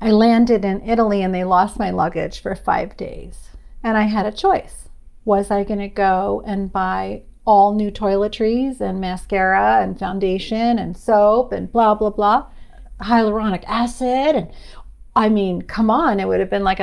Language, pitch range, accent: English, 190-220 Hz, American